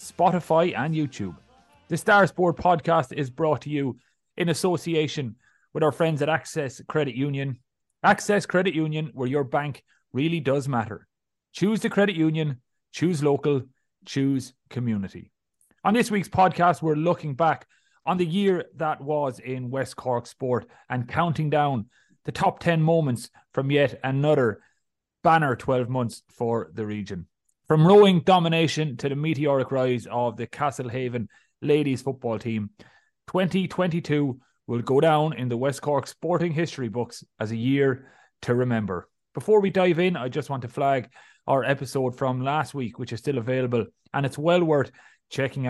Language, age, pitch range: English, 30-49, 125-160 Hz